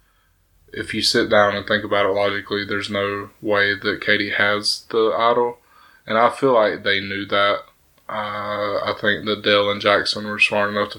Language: English